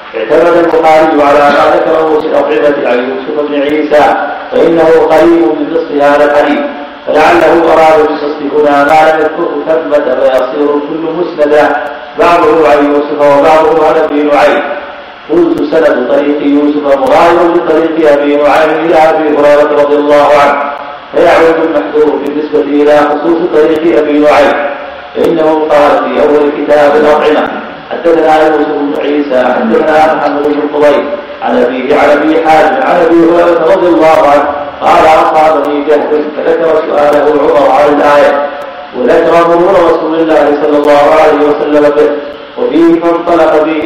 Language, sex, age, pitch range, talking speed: Arabic, male, 40-59, 145-160 Hz, 135 wpm